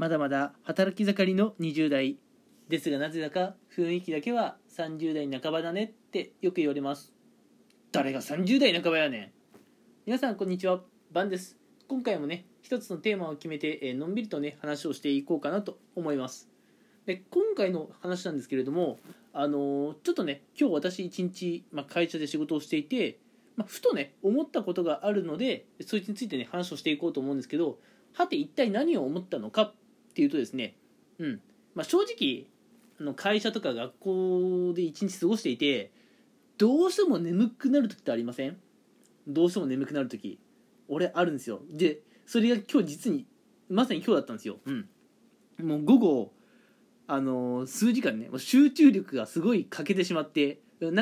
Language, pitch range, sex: Japanese, 155-240 Hz, male